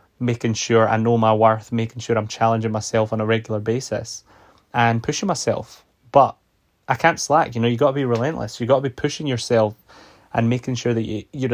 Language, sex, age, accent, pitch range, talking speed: English, male, 10-29, British, 110-130 Hz, 210 wpm